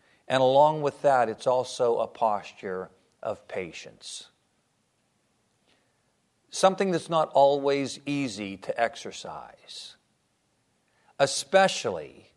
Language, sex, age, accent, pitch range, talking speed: English, male, 50-69, American, 130-160 Hz, 85 wpm